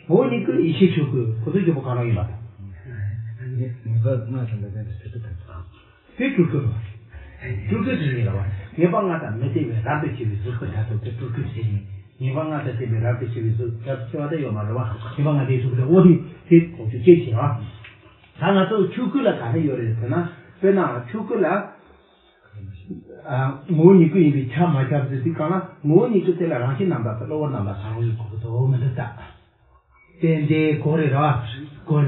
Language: English